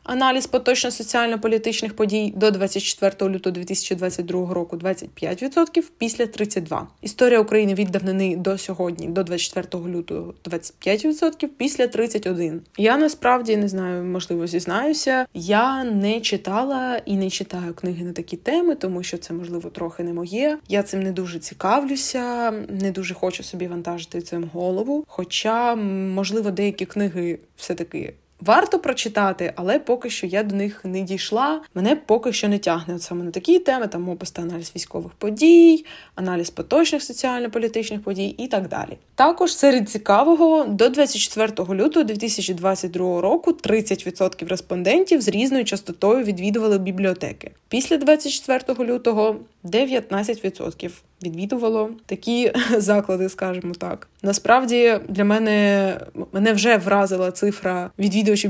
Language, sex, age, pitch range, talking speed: Ukrainian, female, 20-39, 185-240 Hz, 125 wpm